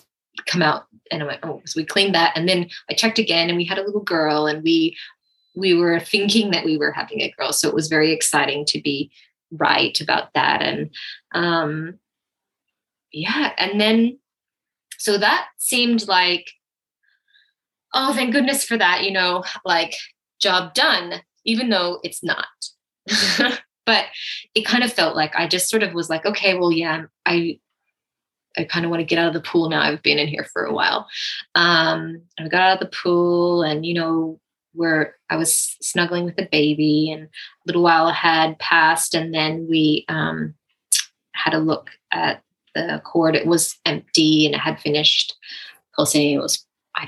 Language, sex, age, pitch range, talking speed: English, female, 20-39, 155-195 Hz, 185 wpm